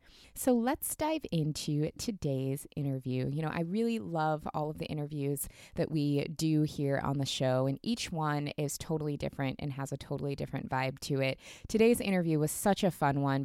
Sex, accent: female, American